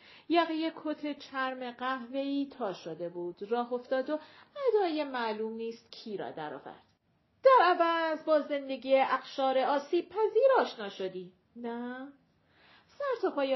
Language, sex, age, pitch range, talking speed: Persian, female, 40-59, 225-315 Hz, 120 wpm